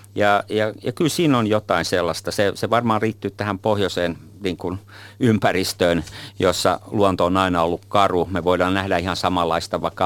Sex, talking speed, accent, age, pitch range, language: male, 175 wpm, native, 50-69, 95-120 Hz, Finnish